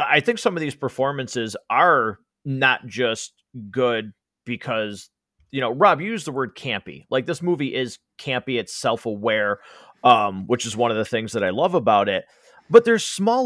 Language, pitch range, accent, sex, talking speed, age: English, 115-150 Hz, American, male, 185 wpm, 30-49